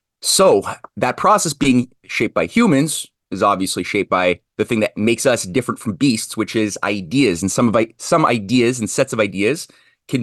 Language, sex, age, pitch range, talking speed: English, male, 30-49, 105-130 Hz, 190 wpm